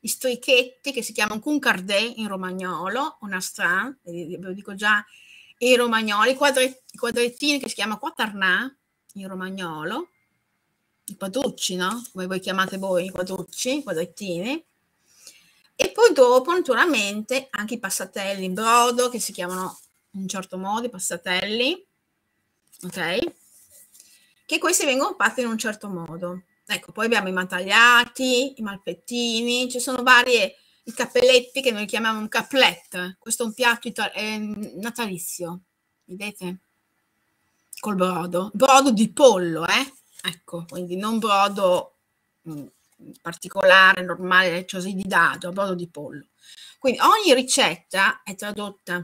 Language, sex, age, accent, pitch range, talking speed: Italian, female, 30-49, native, 185-250 Hz, 140 wpm